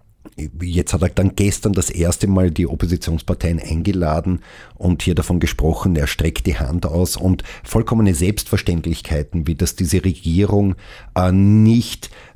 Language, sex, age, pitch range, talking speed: German, male, 50-69, 85-95 Hz, 135 wpm